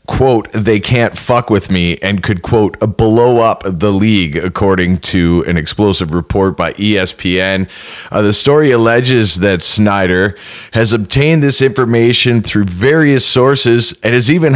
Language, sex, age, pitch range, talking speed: English, male, 30-49, 90-115 Hz, 155 wpm